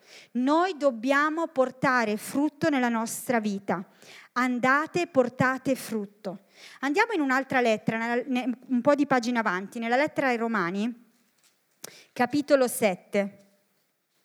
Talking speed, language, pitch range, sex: 105 wpm, Italian, 225-285 Hz, female